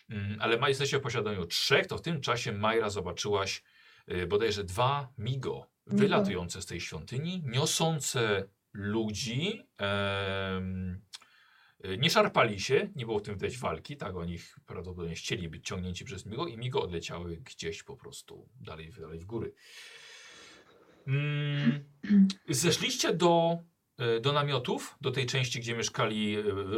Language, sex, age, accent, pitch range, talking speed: Polish, male, 40-59, native, 100-150 Hz, 140 wpm